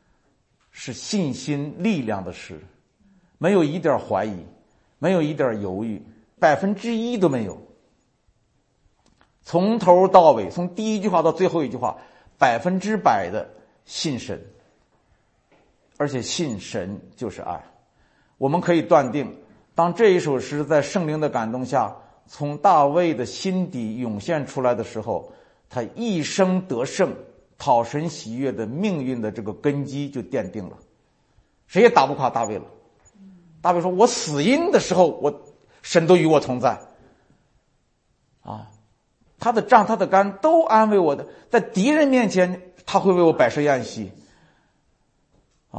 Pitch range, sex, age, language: 130-195 Hz, male, 50-69, Chinese